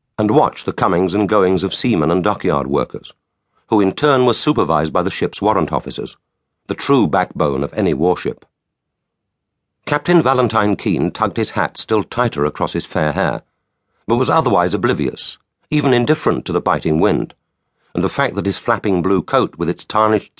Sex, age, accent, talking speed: male, 50-69, British, 175 wpm